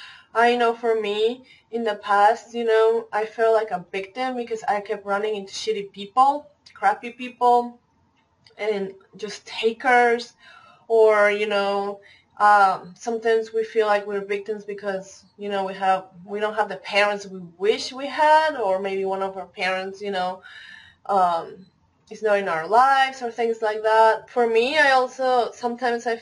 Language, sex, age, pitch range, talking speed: English, female, 20-39, 195-230 Hz, 170 wpm